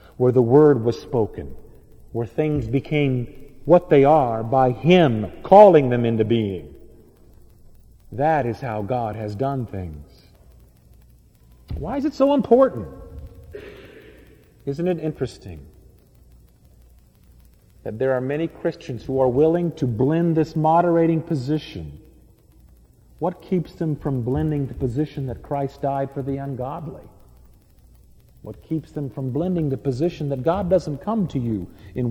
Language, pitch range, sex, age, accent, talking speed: English, 110-155 Hz, male, 50-69, American, 135 wpm